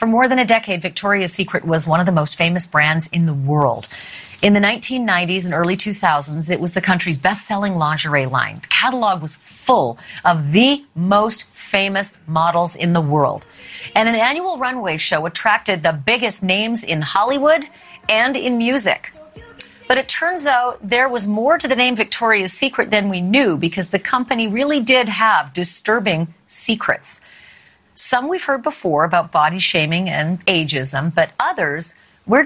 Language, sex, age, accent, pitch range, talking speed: English, female, 40-59, American, 170-245 Hz, 170 wpm